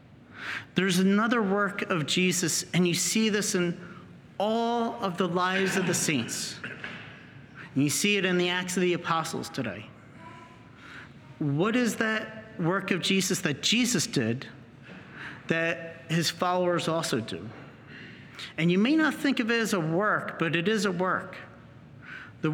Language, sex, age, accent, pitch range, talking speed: English, male, 40-59, American, 150-195 Hz, 150 wpm